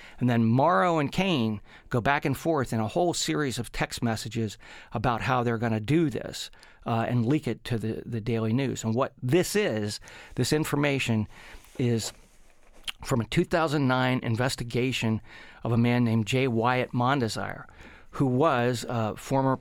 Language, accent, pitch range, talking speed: English, American, 115-135 Hz, 170 wpm